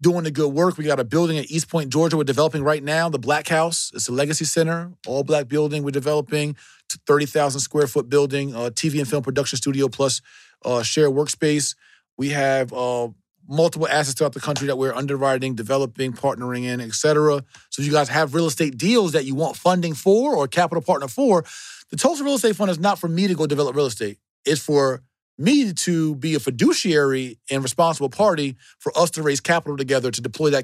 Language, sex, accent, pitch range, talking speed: English, male, American, 130-160 Hz, 210 wpm